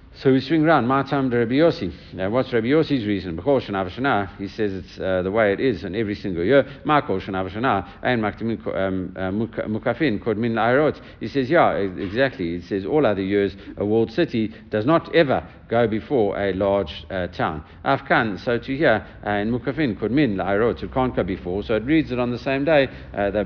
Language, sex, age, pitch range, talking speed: English, male, 60-79, 95-125 Hz, 175 wpm